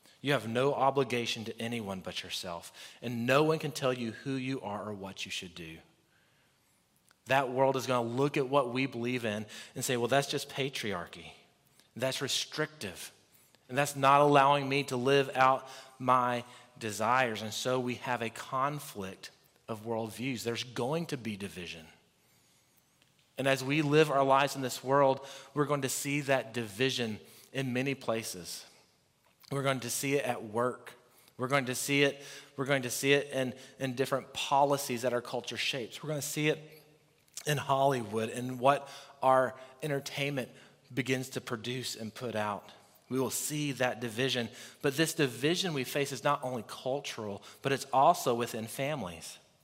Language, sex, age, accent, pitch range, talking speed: English, male, 30-49, American, 120-140 Hz, 175 wpm